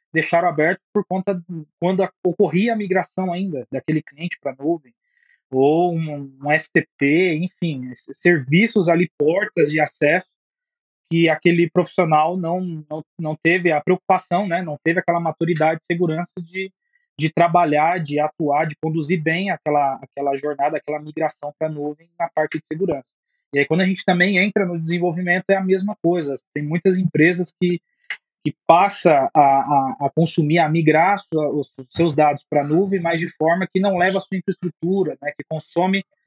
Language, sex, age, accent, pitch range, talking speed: English, male, 20-39, Brazilian, 155-185 Hz, 175 wpm